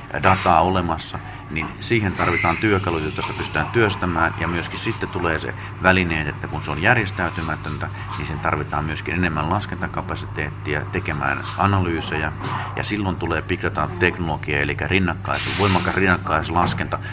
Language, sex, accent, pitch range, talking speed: Finnish, male, native, 85-105 Hz, 125 wpm